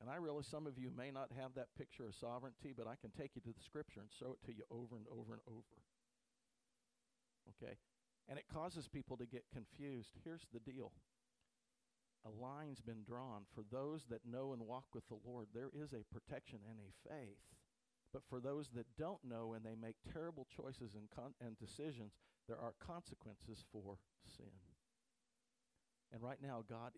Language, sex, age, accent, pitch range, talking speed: English, male, 50-69, American, 110-140 Hz, 190 wpm